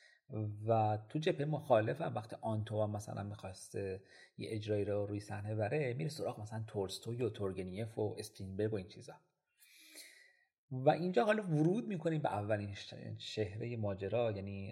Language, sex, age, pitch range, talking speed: Persian, male, 40-59, 105-135 Hz, 145 wpm